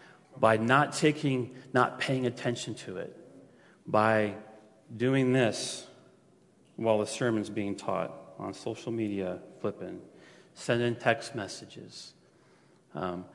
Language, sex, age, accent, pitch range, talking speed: English, male, 40-59, American, 110-135 Hz, 110 wpm